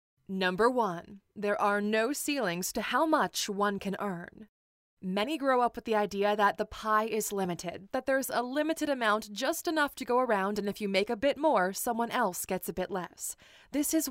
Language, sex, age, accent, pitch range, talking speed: English, female, 20-39, American, 205-245 Hz, 205 wpm